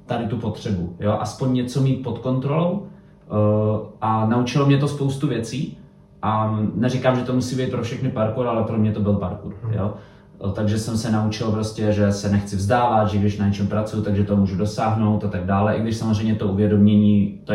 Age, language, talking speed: 20-39, Czech, 200 wpm